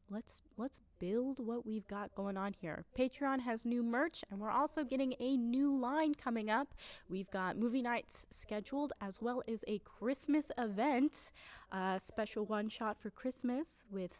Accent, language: American, English